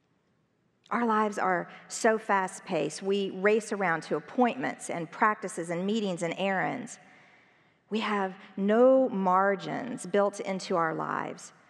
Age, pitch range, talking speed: 40-59, 175-215 Hz, 130 wpm